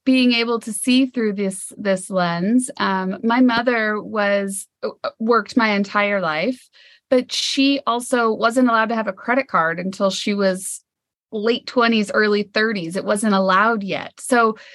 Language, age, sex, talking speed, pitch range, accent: English, 30-49, female, 155 wpm, 200-255 Hz, American